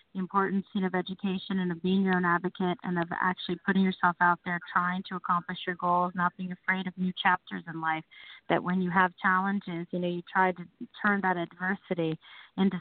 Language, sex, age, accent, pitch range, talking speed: English, female, 30-49, American, 175-190 Hz, 205 wpm